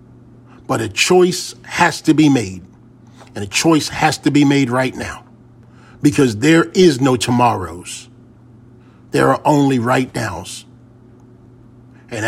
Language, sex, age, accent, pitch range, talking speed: English, male, 40-59, American, 120-140 Hz, 130 wpm